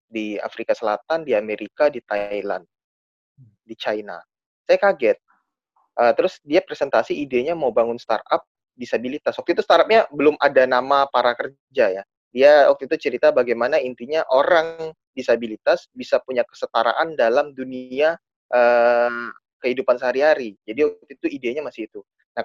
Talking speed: 140 wpm